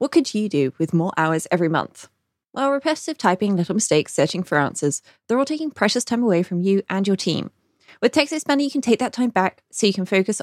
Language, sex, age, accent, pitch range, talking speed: English, female, 20-39, British, 180-255 Hz, 230 wpm